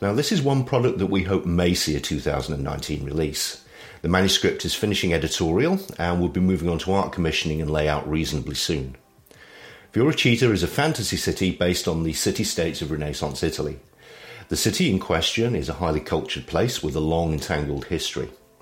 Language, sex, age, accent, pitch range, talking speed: English, male, 50-69, British, 80-95 Hz, 185 wpm